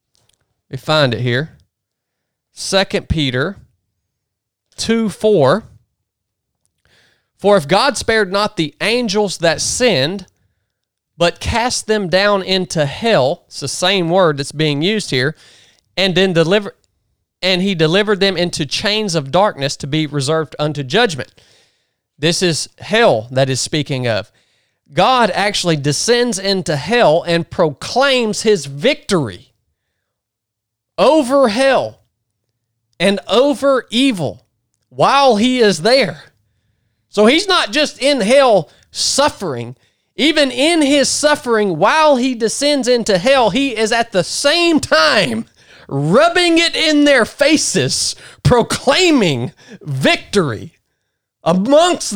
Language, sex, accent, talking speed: English, male, American, 115 wpm